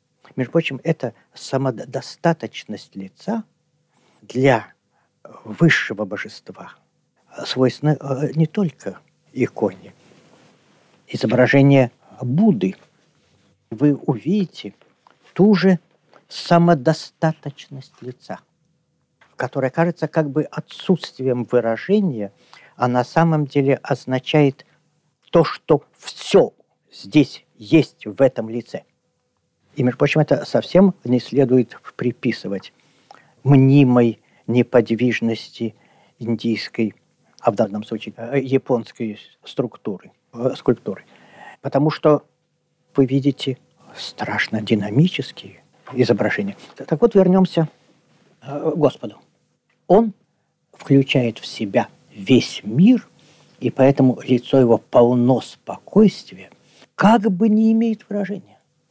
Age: 50-69